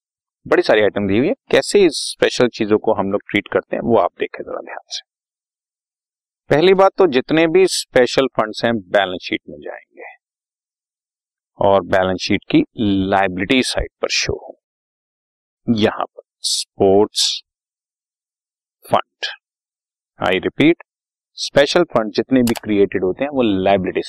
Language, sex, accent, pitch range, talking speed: Hindi, male, native, 105-180 Hz, 135 wpm